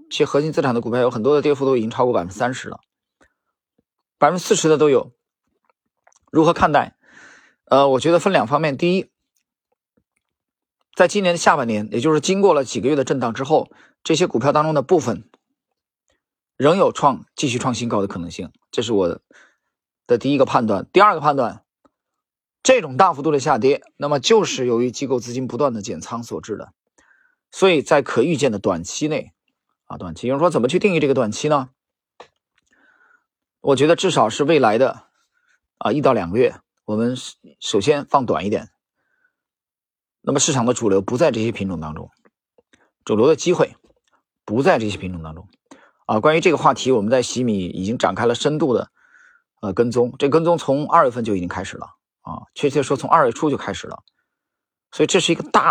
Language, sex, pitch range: Chinese, male, 120-180 Hz